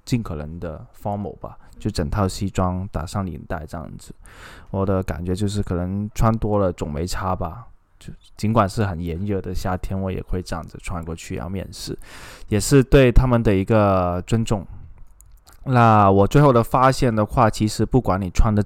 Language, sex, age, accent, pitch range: Chinese, male, 20-39, native, 95-115 Hz